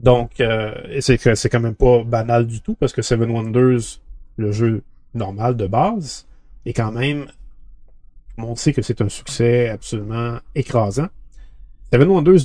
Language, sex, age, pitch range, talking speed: French, male, 30-49, 110-130 Hz, 155 wpm